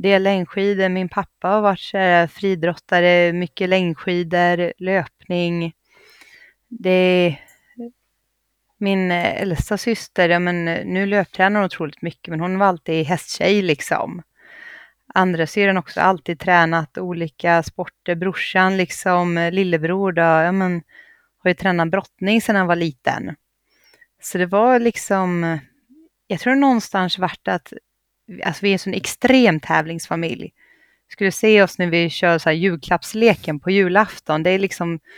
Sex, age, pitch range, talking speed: female, 30-49, 170-215 Hz, 135 wpm